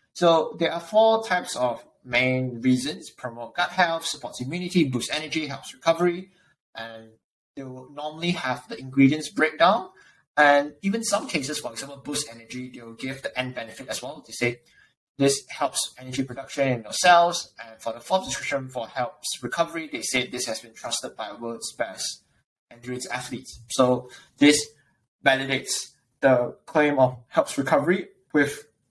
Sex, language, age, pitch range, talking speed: male, English, 20-39, 125-155 Hz, 160 wpm